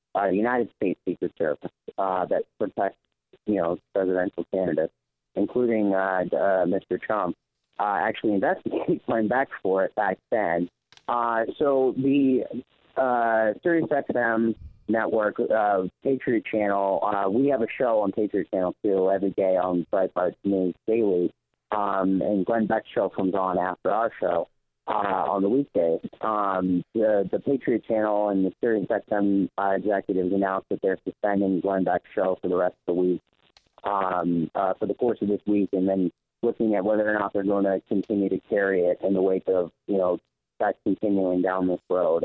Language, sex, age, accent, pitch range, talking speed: English, male, 30-49, American, 95-105 Hz, 175 wpm